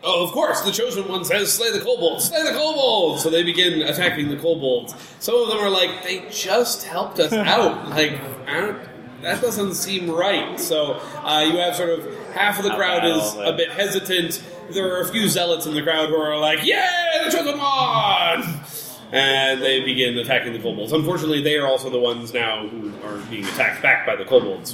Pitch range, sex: 120-180 Hz, male